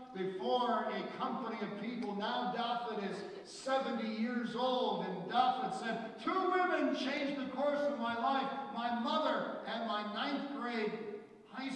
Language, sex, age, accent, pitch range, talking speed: English, male, 50-69, American, 190-275 Hz, 150 wpm